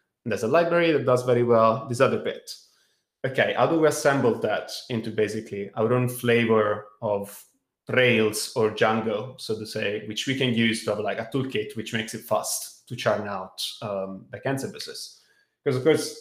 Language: English